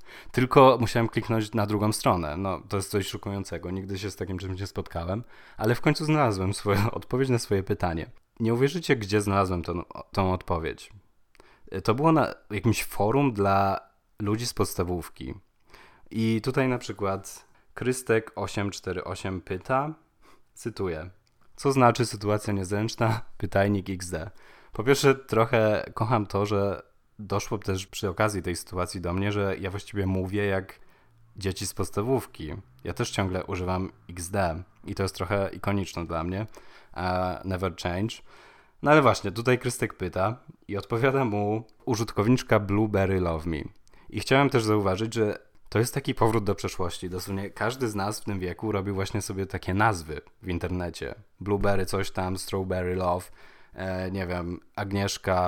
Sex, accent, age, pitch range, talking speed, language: male, native, 20-39, 95-110 Hz, 150 wpm, Polish